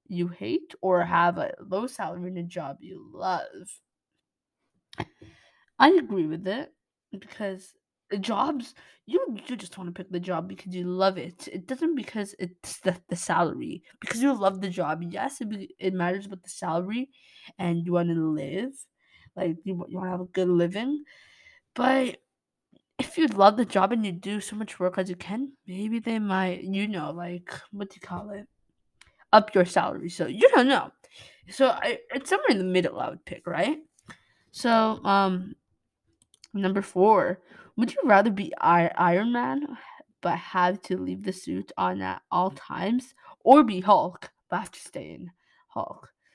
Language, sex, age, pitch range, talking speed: English, female, 20-39, 180-245 Hz, 180 wpm